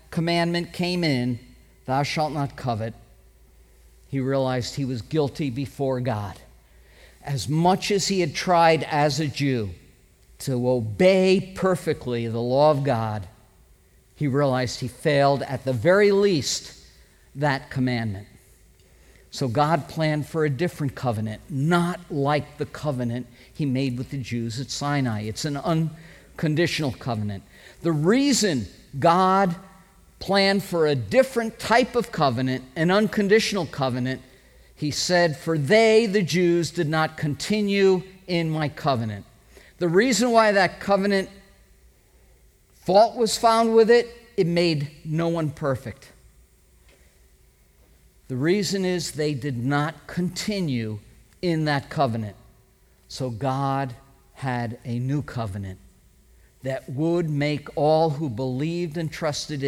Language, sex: English, male